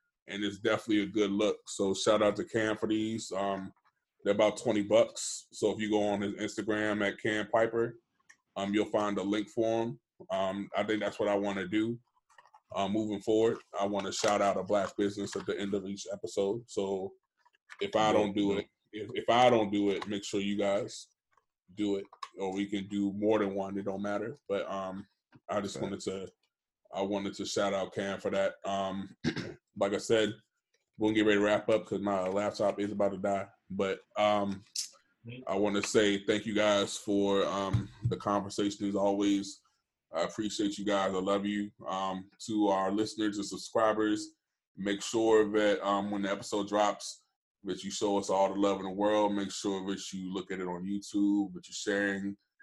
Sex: male